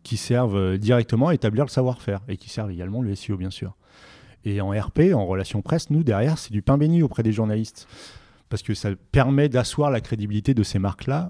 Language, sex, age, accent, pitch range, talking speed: French, male, 30-49, French, 100-130 Hz, 210 wpm